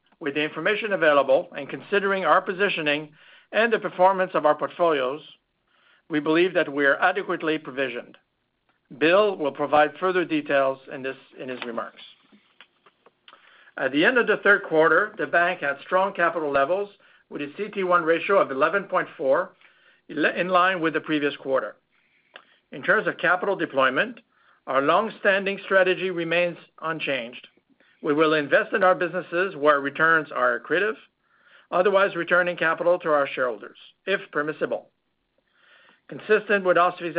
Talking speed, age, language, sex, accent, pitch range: 140 wpm, 60-79, English, male, American, 150-190 Hz